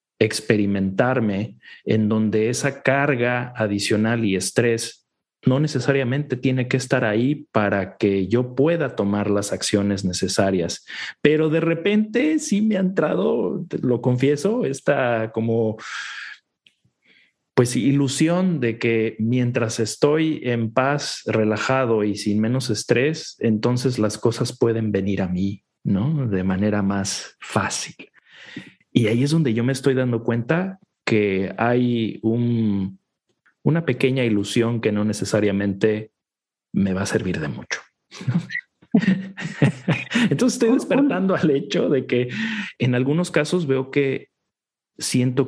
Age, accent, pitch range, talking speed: 40-59, Mexican, 105-140 Hz, 125 wpm